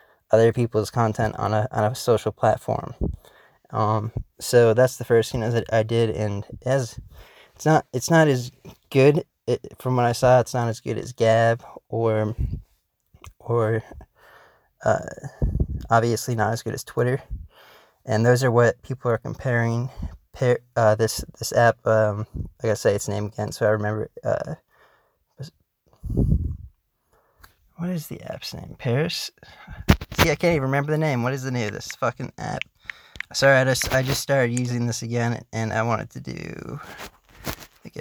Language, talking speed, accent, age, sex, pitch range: English, 165 wpm, American, 20-39, male, 110-130 Hz